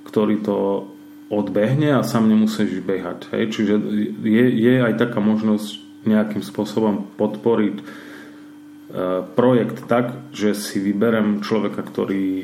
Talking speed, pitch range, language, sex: 120 wpm, 100-115 Hz, Slovak, male